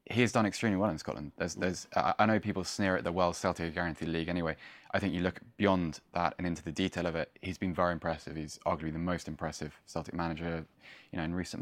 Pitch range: 85-95 Hz